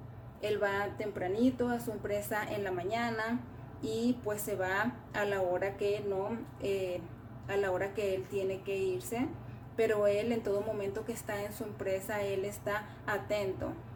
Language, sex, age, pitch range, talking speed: Spanish, female, 30-49, 140-215 Hz, 170 wpm